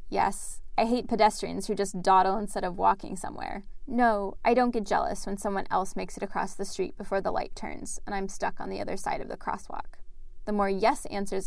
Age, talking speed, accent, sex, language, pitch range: 10-29, 220 wpm, American, female, English, 195-225 Hz